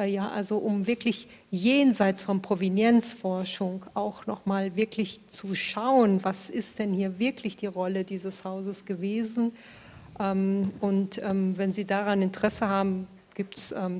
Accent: German